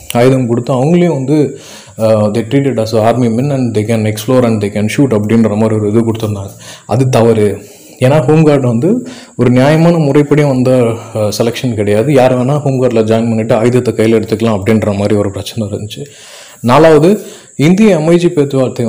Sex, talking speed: male, 160 wpm